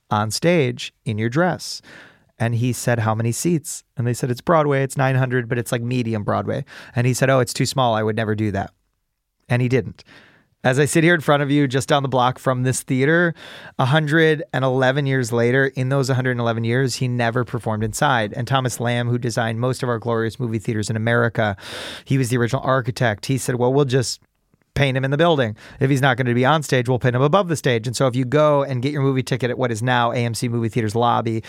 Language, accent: English, American